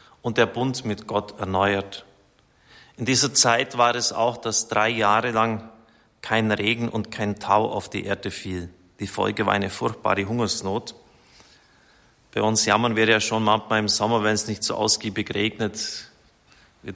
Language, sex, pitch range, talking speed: German, male, 105-120 Hz, 165 wpm